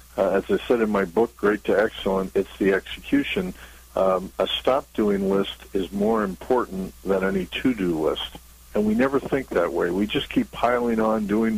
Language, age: English, 60-79